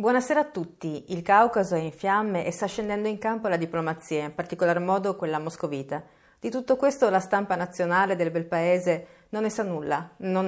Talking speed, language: 195 wpm, Italian